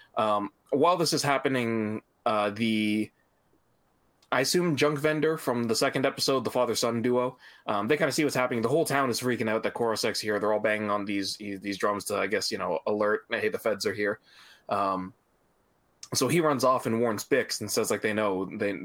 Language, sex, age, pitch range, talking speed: English, male, 20-39, 105-135 Hz, 210 wpm